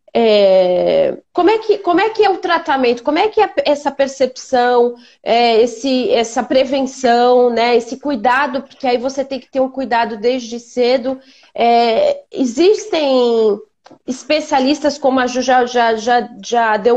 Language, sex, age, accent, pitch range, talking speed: Portuguese, female, 30-49, Brazilian, 235-320 Hz, 155 wpm